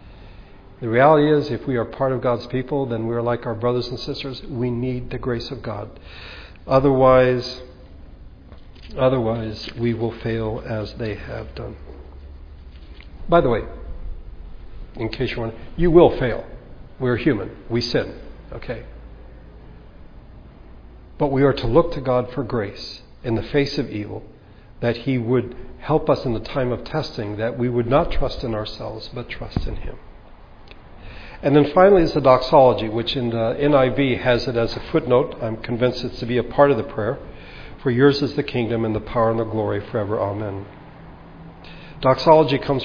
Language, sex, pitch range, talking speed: English, male, 110-130 Hz, 175 wpm